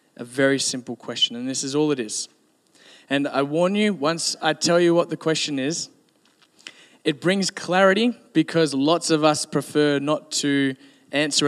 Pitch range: 130-165 Hz